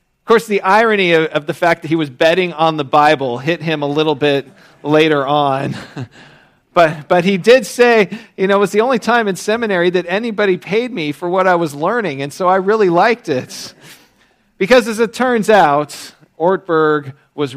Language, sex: English, male